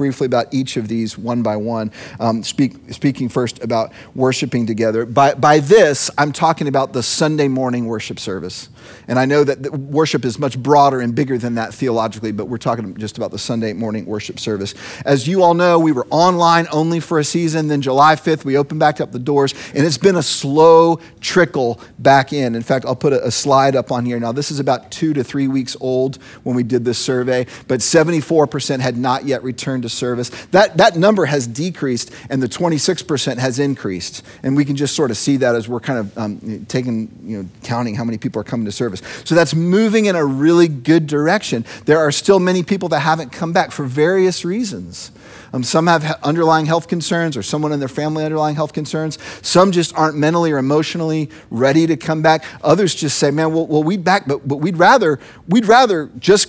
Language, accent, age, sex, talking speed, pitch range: English, American, 40-59, male, 215 wpm, 125-165 Hz